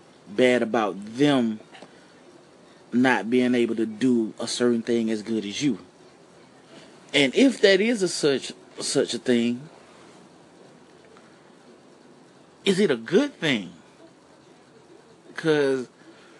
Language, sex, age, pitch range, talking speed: English, male, 30-49, 120-165 Hz, 110 wpm